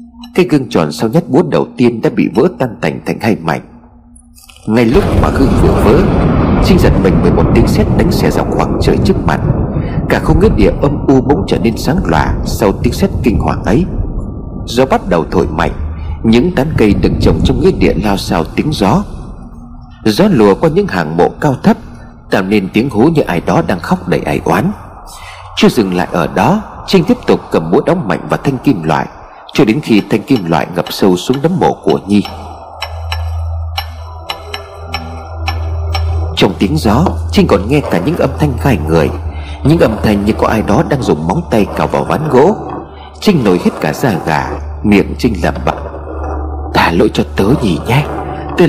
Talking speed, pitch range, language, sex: 200 wpm, 80-105 Hz, Vietnamese, male